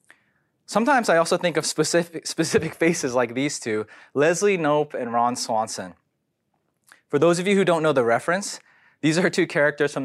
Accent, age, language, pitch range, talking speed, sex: American, 20-39, English, 125-180 Hz, 180 wpm, male